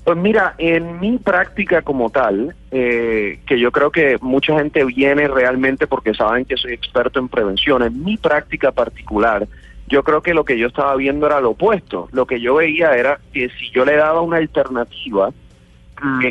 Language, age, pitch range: Spanish, 30-49, 115-150 Hz